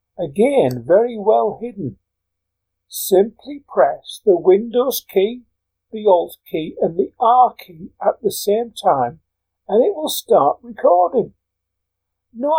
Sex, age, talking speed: male, 50-69, 125 wpm